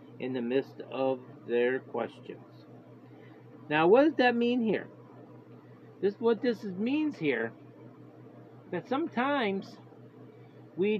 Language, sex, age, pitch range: English, male, 50-69, 145-195 Hz